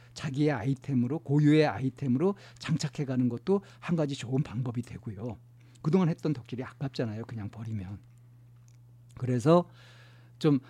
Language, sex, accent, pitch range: Korean, male, native, 120-155 Hz